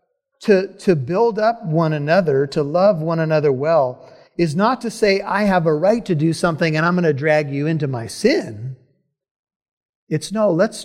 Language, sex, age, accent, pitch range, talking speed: English, male, 50-69, American, 155-205 Hz, 190 wpm